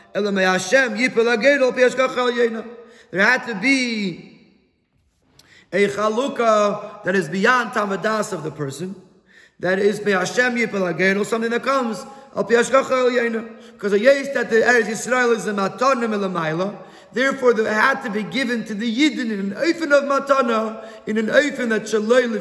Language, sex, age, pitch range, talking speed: English, male, 30-49, 160-230 Hz, 140 wpm